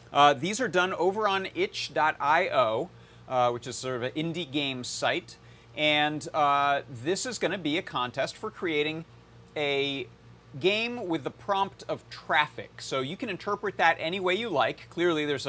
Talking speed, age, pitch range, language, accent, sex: 175 wpm, 30-49, 125-165 Hz, English, American, male